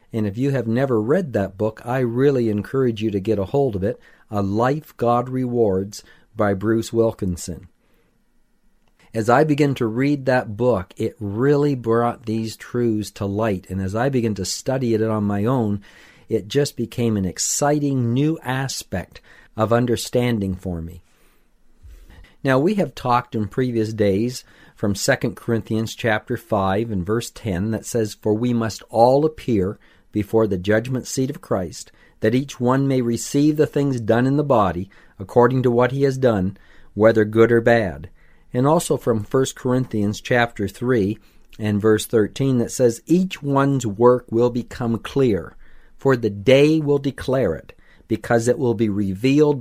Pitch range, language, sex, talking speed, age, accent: 105-130 Hz, English, male, 165 wpm, 50-69, American